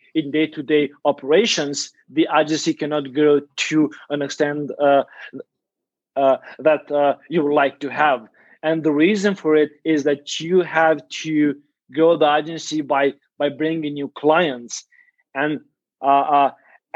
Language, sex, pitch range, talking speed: English, male, 145-165 Hz, 140 wpm